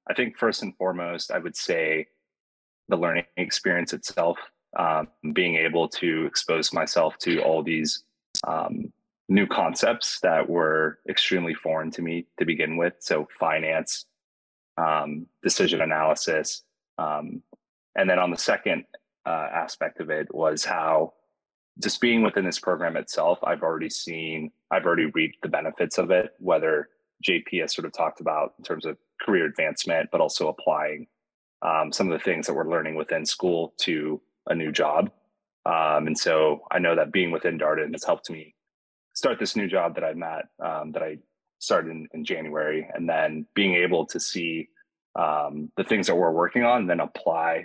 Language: English